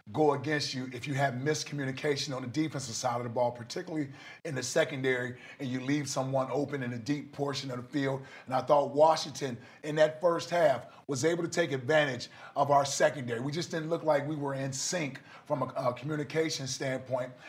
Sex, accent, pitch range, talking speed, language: male, American, 130-155 Hz, 205 wpm, English